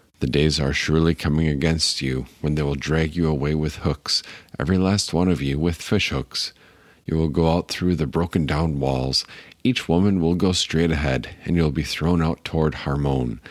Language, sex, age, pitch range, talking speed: English, male, 50-69, 70-90 Hz, 200 wpm